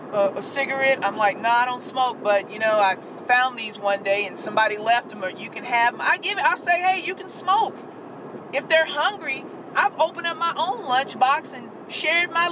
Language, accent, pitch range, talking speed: English, American, 195-255 Hz, 230 wpm